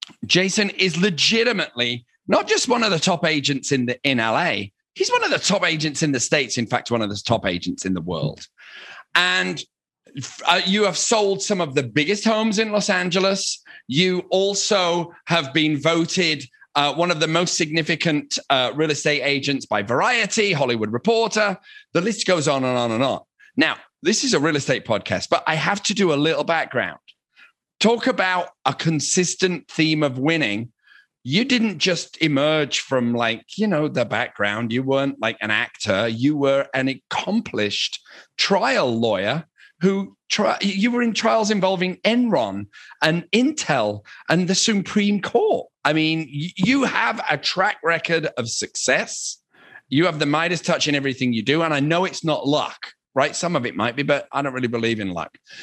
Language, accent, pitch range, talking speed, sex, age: English, British, 135-195 Hz, 180 wpm, male, 30-49